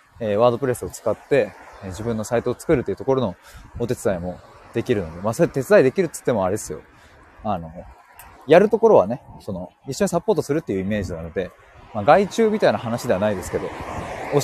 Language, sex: Japanese, male